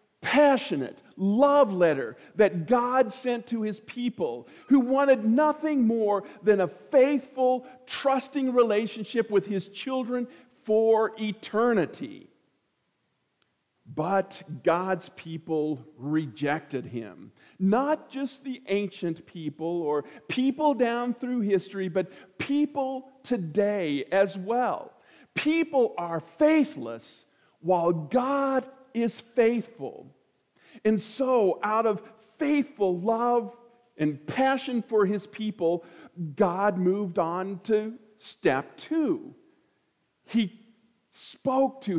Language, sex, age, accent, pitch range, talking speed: English, male, 50-69, American, 190-255 Hz, 100 wpm